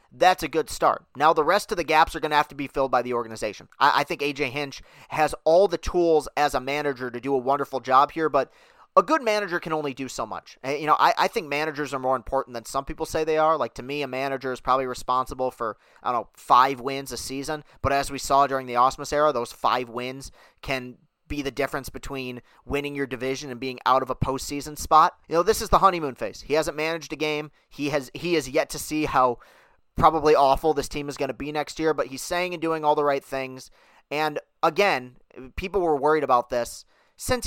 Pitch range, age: 125-155 Hz, 30-49